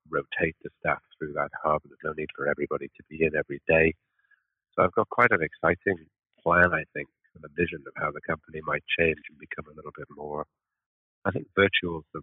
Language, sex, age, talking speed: English, male, 50-69, 220 wpm